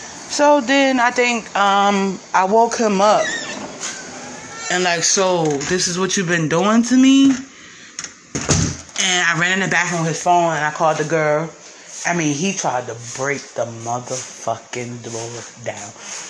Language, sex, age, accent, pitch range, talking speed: English, female, 20-39, American, 165-195 Hz, 160 wpm